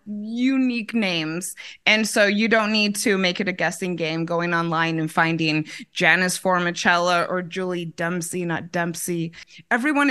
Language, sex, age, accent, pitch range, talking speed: English, female, 20-39, American, 175-215 Hz, 150 wpm